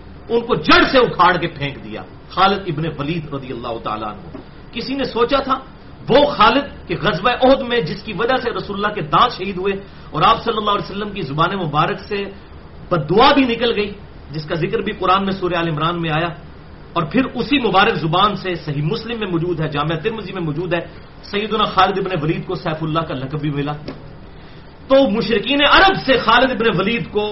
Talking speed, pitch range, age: 165 wpm, 170-235 Hz, 40-59